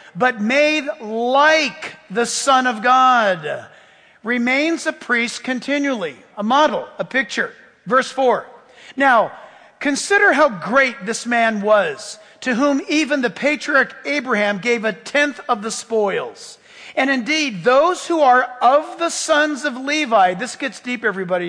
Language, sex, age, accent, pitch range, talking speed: English, male, 50-69, American, 210-285 Hz, 140 wpm